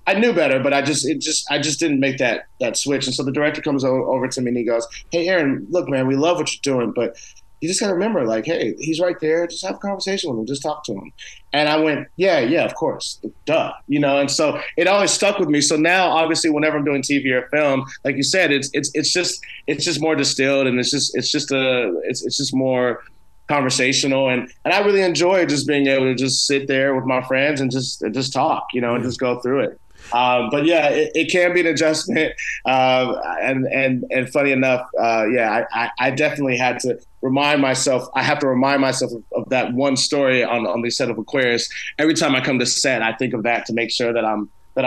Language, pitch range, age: English, 125-150 Hz, 30-49